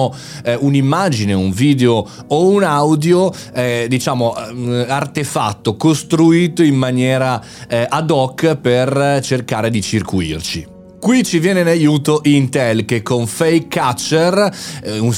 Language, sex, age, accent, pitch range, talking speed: Italian, male, 30-49, native, 120-160 Hz, 120 wpm